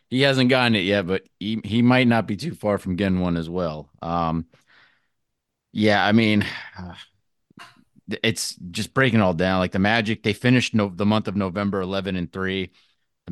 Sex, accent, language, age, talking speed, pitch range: male, American, English, 30-49, 195 wpm, 90-105 Hz